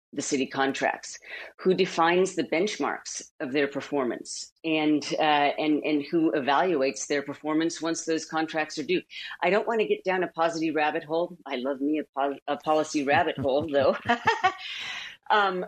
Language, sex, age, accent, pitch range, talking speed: English, female, 40-59, American, 145-185 Hz, 170 wpm